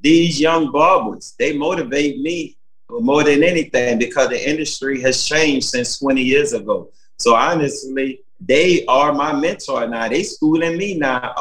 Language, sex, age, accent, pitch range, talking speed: English, male, 30-49, American, 115-150 Hz, 155 wpm